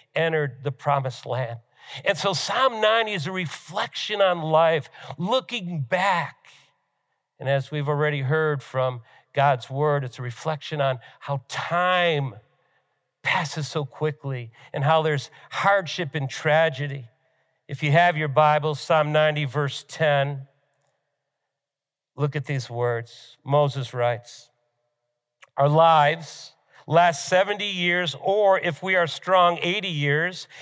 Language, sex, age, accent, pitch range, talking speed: English, male, 50-69, American, 140-180 Hz, 125 wpm